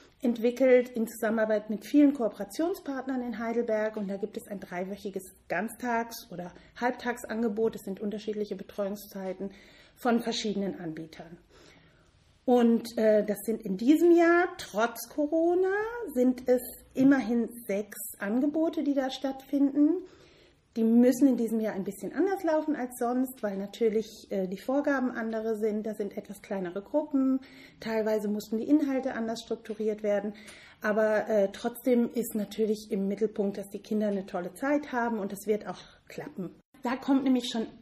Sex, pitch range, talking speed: female, 205-250 Hz, 145 wpm